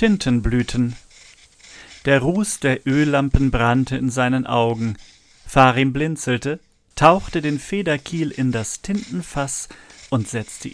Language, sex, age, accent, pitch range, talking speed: German, male, 40-59, German, 120-155 Hz, 105 wpm